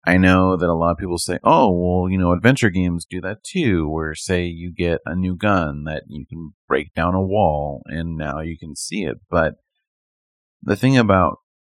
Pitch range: 80-100 Hz